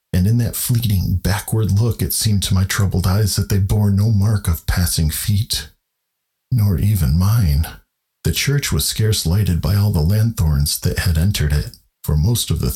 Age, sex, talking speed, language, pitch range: 50-69, male, 190 wpm, English, 85-105 Hz